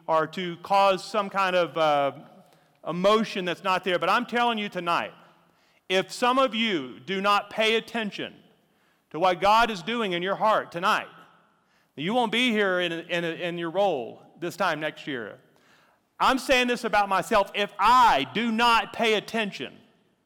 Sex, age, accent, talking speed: male, 40-59, American, 170 wpm